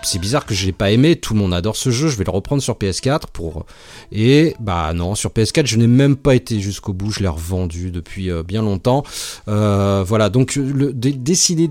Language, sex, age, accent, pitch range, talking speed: French, male, 30-49, French, 105-145 Hz, 225 wpm